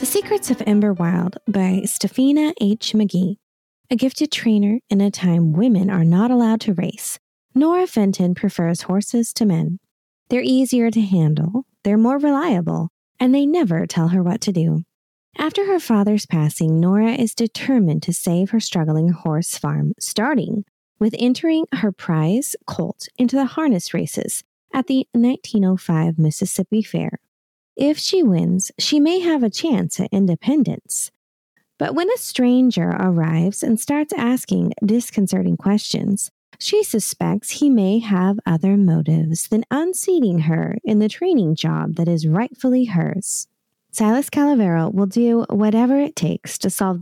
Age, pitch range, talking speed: 20-39, 180-255 Hz, 150 wpm